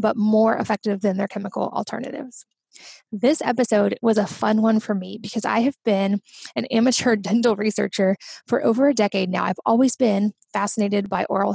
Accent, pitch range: American, 200-235 Hz